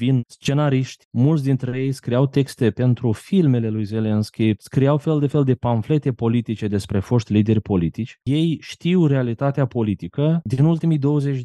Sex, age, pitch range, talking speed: male, 20-39, 110-140 Hz, 145 wpm